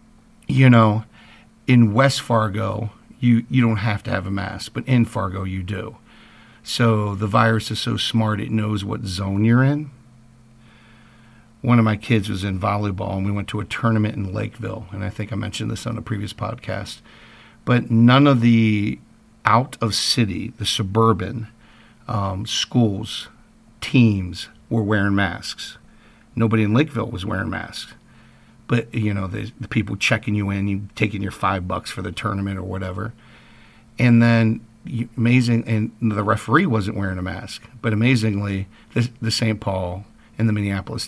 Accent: American